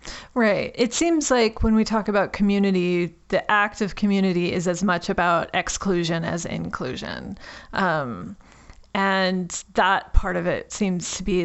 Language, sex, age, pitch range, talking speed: English, female, 30-49, 190-220 Hz, 150 wpm